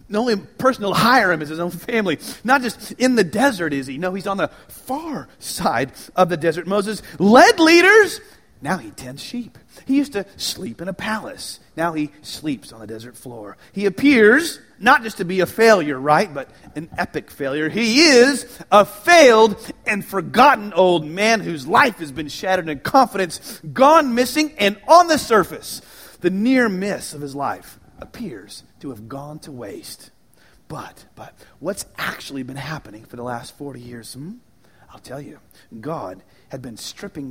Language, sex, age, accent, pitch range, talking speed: English, male, 40-59, American, 150-235 Hz, 180 wpm